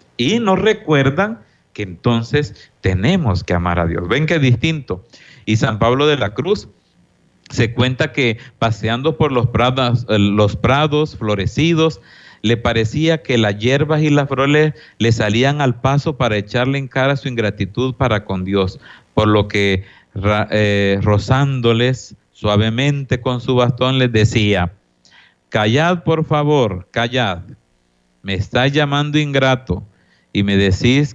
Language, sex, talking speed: Spanish, male, 145 wpm